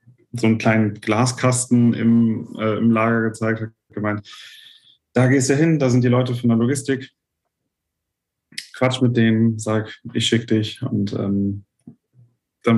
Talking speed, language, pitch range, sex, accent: 150 wpm, German, 110-120 Hz, male, German